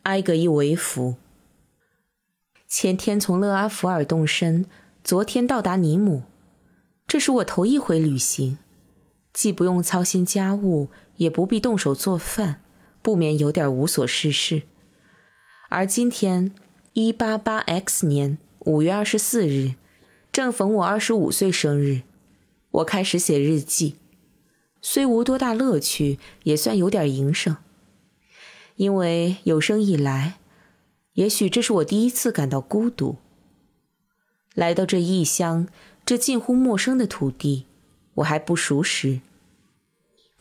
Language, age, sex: Chinese, 20-39, female